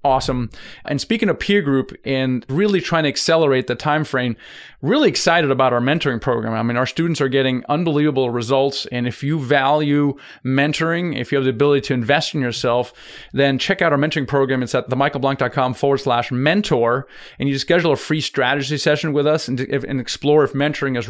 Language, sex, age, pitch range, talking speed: English, male, 30-49, 130-160 Hz, 200 wpm